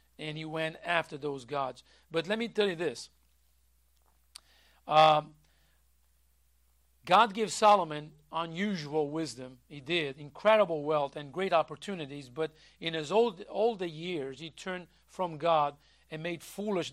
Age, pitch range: 50-69, 155-210 Hz